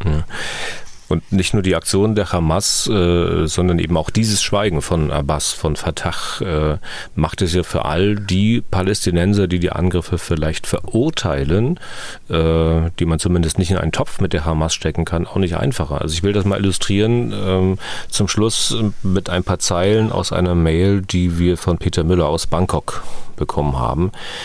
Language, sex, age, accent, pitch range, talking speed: German, male, 40-59, German, 80-100 Hz, 175 wpm